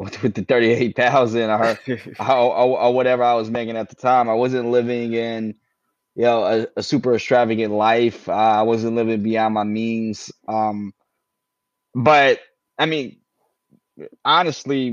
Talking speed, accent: 145 wpm, American